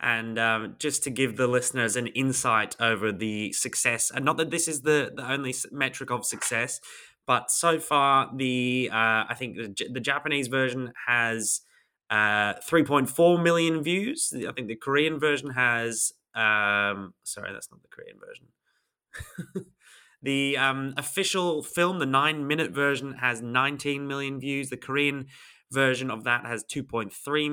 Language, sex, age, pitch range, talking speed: English, male, 20-39, 110-145 Hz, 155 wpm